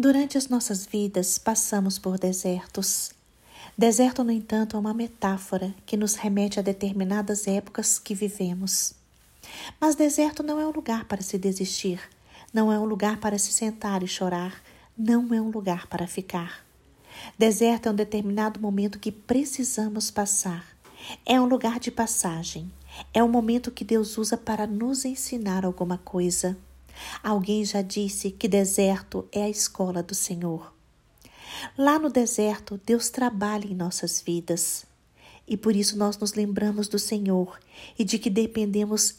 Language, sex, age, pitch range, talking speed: Portuguese, female, 40-59, 195-225 Hz, 150 wpm